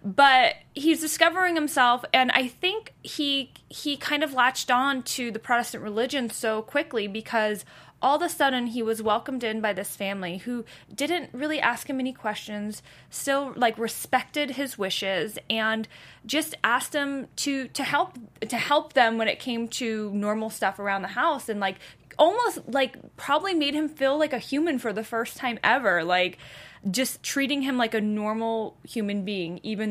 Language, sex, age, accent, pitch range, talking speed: English, female, 20-39, American, 200-265 Hz, 175 wpm